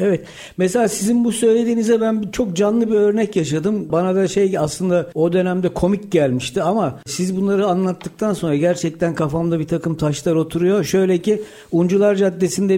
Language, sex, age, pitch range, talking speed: Turkish, male, 60-79, 160-195 Hz, 160 wpm